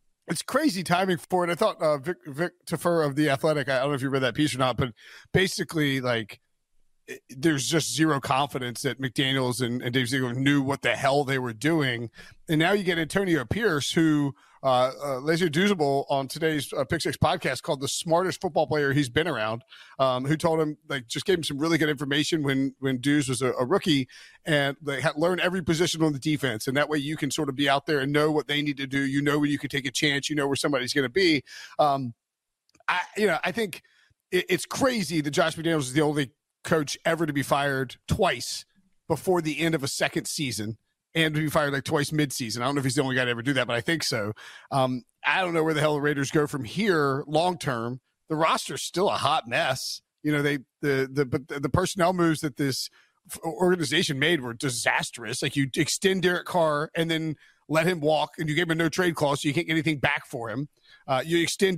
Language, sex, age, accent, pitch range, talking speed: English, male, 40-59, American, 140-165 Hz, 240 wpm